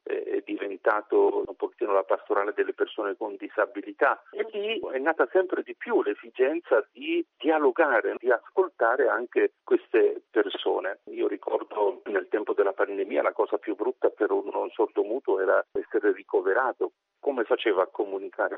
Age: 40-59